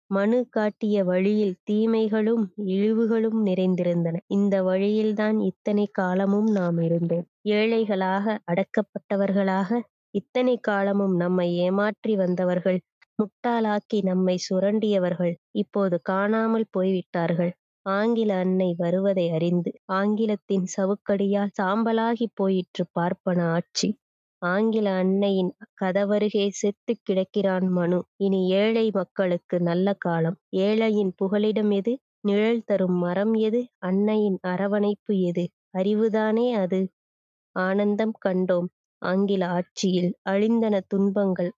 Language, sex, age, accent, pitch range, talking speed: Tamil, female, 20-39, native, 185-215 Hz, 90 wpm